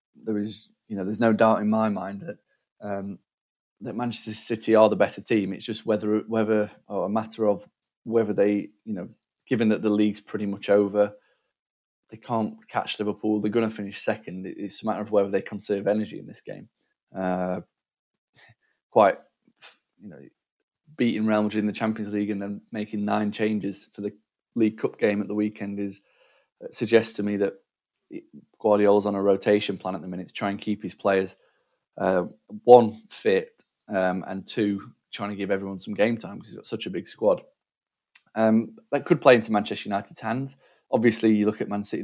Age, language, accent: 20-39, English, British